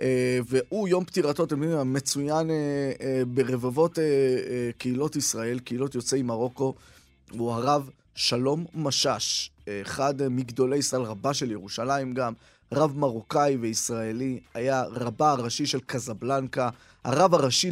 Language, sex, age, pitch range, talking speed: Hebrew, male, 20-39, 130-155 Hz, 135 wpm